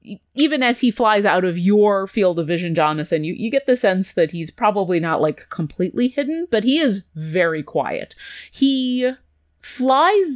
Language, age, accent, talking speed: English, 30-49, American, 175 wpm